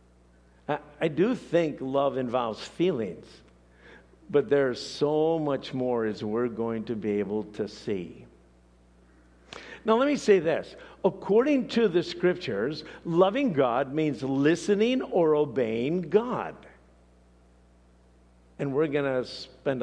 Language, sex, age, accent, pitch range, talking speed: English, male, 50-69, American, 105-150 Hz, 120 wpm